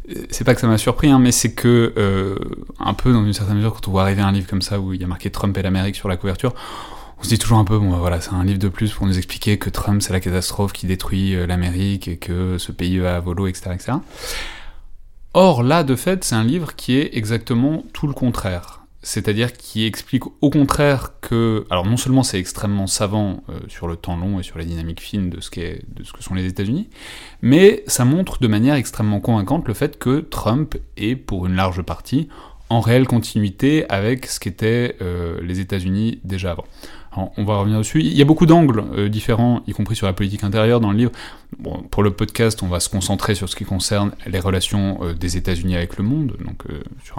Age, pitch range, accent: 20-39, 95-120 Hz, French